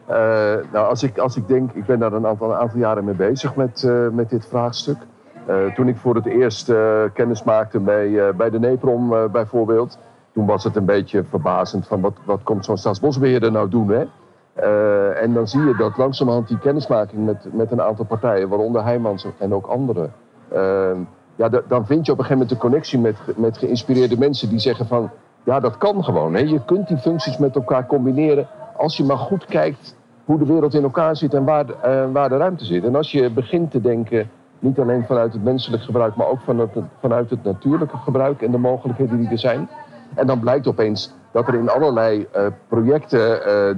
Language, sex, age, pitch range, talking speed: Dutch, male, 50-69, 110-135 Hz, 205 wpm